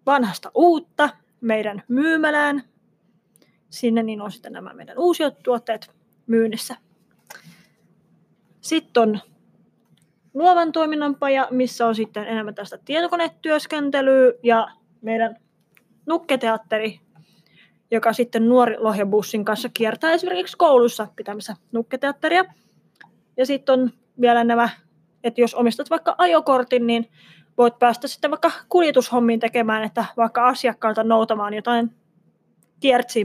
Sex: female